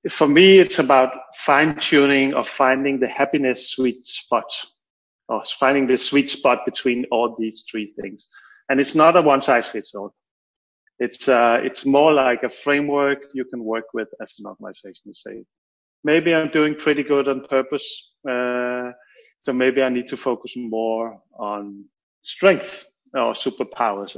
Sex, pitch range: male, 125-160 Hz